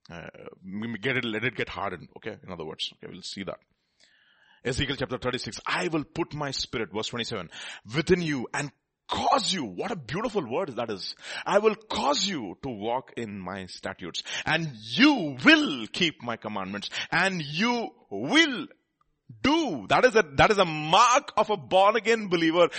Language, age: English, 30-49